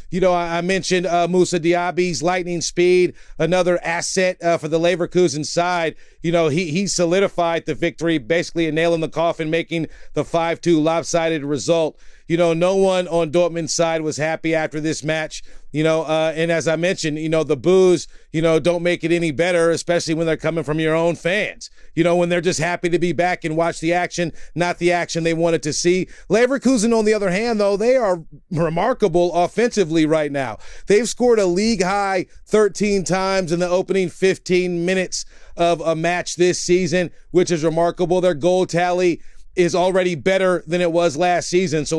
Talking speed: 195 wpm